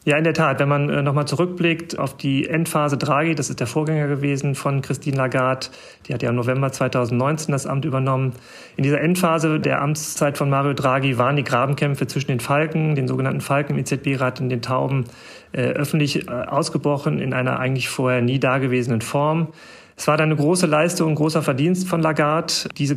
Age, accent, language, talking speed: 40-59, German, German, 195 wpm